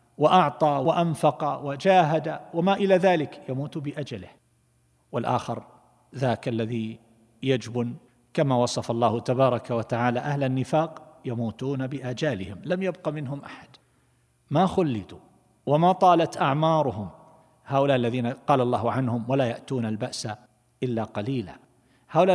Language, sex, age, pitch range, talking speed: Arabic, male, 50-69, 115-145 Hz, 110 wpm